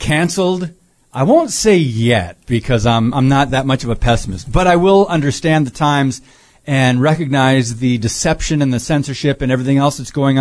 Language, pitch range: English, 135-175 Hz